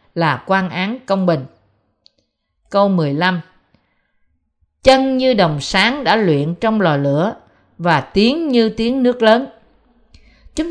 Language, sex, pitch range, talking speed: Vietnamese, female, 170-255 Hz, 130 wpm